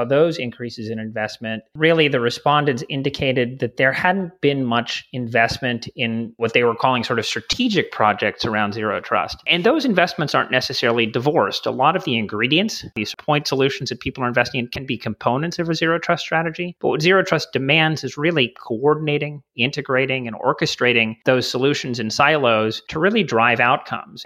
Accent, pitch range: American, 115-145 Hz